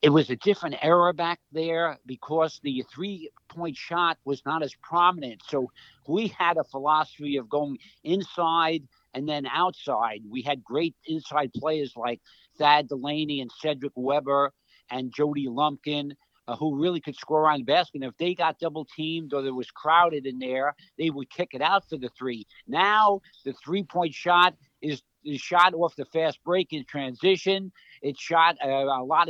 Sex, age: male, 60-79